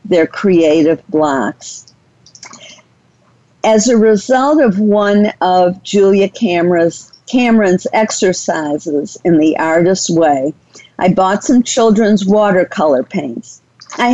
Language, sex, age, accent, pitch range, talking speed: English, female, 50-69, American, 175-240 Hz, 100 wpm